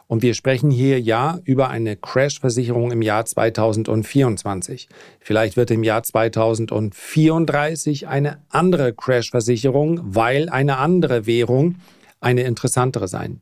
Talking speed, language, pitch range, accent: 115 wpm, German, 110-135 Hz, German